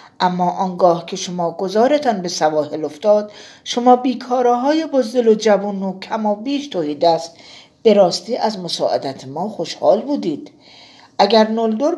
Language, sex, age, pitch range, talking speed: Persian, female, 50-69, 190-250 Hz, 135 wpm